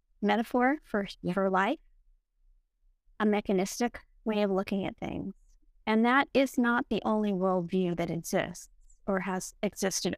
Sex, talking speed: female, 135 wpm